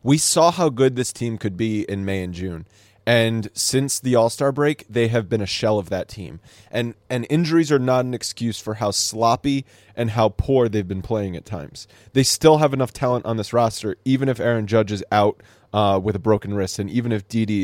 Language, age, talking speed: English, 20-39, 225 wpm